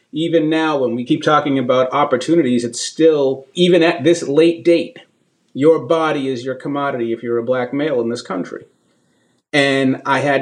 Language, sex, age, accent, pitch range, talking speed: English, male, 30-49, American, 130-165 Hz, 180 wpm